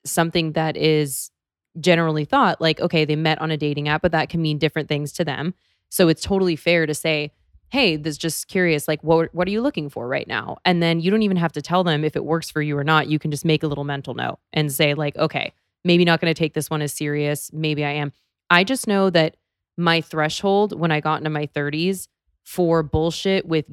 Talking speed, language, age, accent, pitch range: 245 wpm, English, 20-39, American, 150-165 Hz